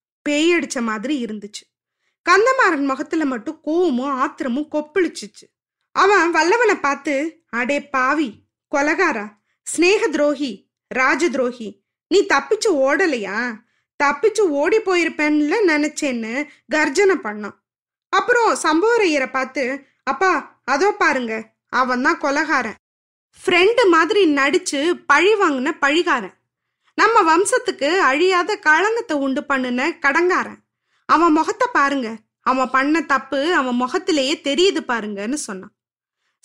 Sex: female